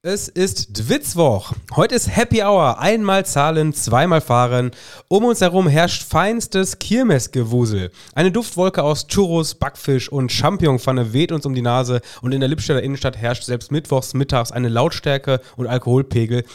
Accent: German